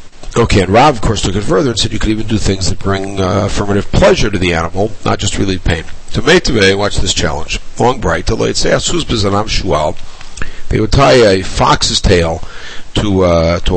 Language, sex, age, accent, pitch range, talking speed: English, male, 60-79, American, 90-115 Hz, 195 wpm